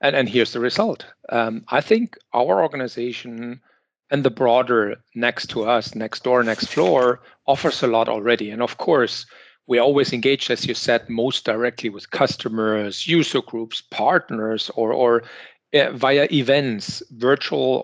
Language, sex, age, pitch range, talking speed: English, male, 40-59, 115-140 Hz, 155 wpm